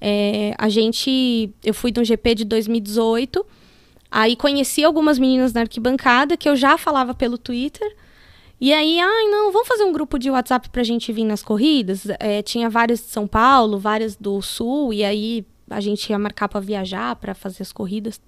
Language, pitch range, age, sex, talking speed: Portuguese, 220-350 Hz, 10-29, female, 190 wpm